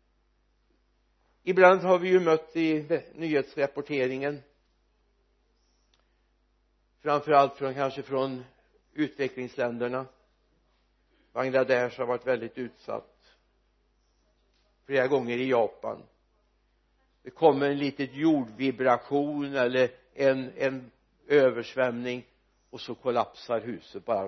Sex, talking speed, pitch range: male, 85 wpm, 125-155 Hz